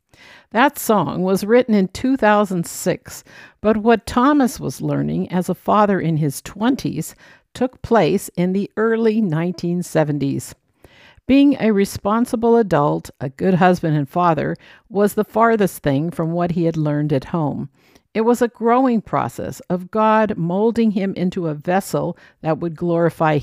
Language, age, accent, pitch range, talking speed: English, 60-79, American, 160-225 Hz, 150 wpm